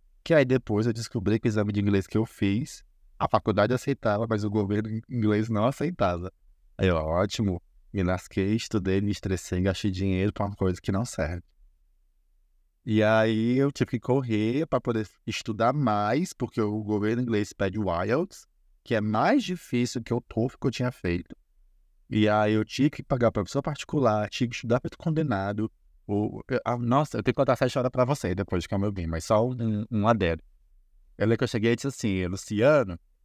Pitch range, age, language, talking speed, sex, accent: 95-125 Hz, 20-39, Portuguese, 200 wpm, male, Brazilian